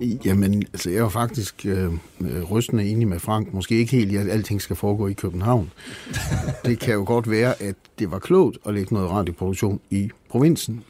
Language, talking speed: Danish, 195 wpm